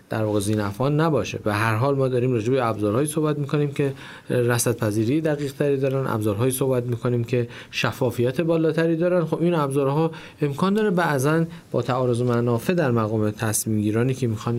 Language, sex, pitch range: Persian, male, 120-160 Hz